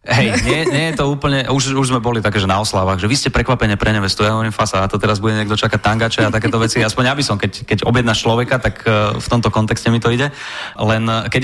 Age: 20-39